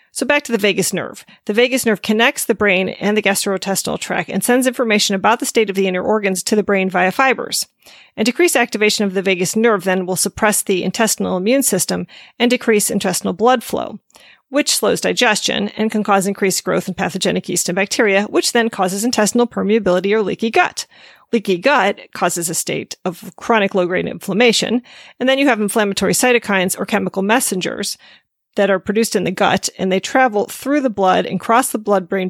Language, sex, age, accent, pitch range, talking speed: English, female, 40-59, American, 190-230 Hz, 195 wpm